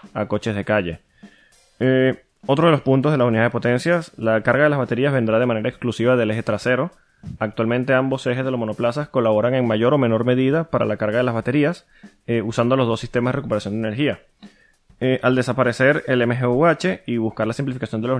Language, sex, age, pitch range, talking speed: Spanish, male, 20-39, 115-140 Hz, 210 wpm